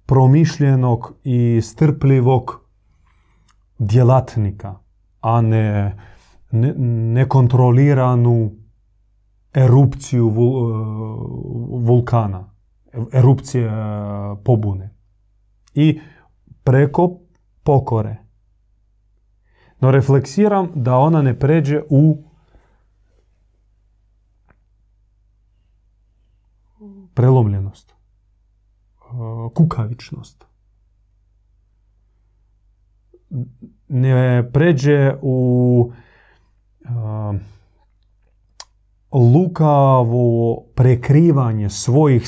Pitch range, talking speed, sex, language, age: 100-135 Hz, 45 wpm, male, Croatian, 30-49